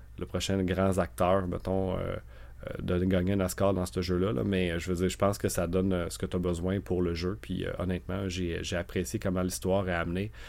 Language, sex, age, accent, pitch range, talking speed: French, male, 30-49, Canadian, 85-95 Hz, 245 wpm